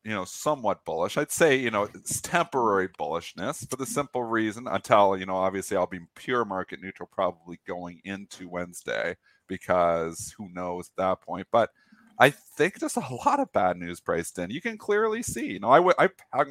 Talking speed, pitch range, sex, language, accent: 195 wpm, 100-140 Hz, male, English, American